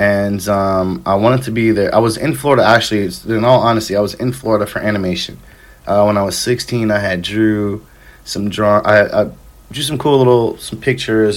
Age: 30-49